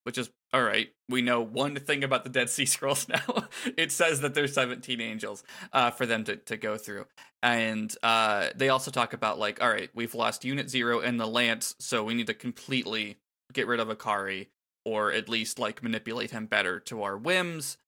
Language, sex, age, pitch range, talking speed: English, male, 20-39, 110-135 Hz, 210 wpm